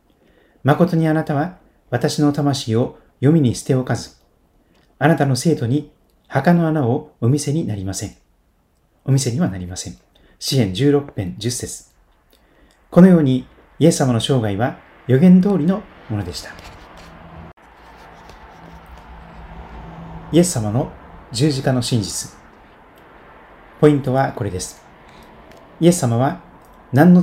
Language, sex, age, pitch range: Japanese, male, 40-59, 110-155 Hz